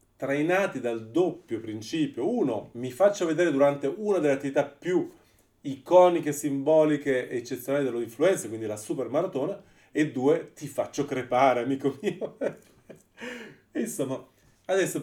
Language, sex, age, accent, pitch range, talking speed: Italian, male, 30-49, native, 120-155 Hz, 125 wpm